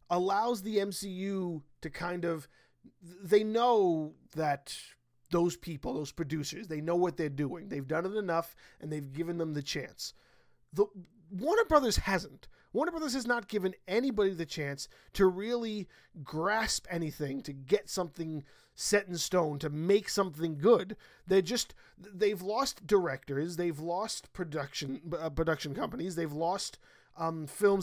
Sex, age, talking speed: male, 30-49, 145 wpm